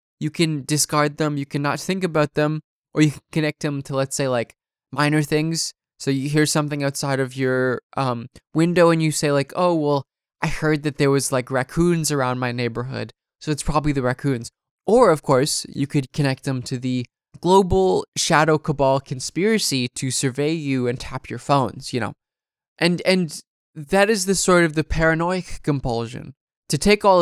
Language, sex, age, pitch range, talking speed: English, male, 20-39, 135-165 Hz, 185 wpm